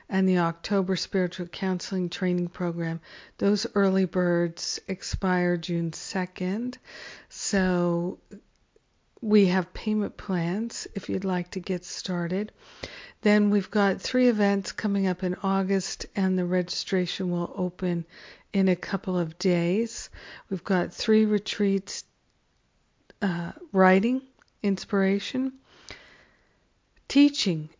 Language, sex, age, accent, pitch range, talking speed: English, female, 50-69, American, 175-200 Hz, 110 wpm